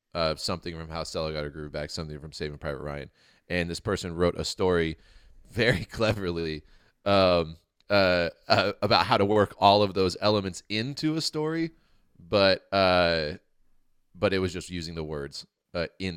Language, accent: English, American